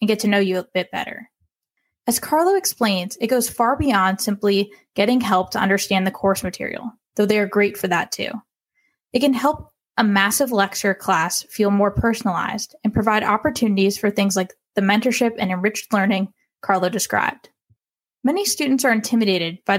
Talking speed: 175 wpm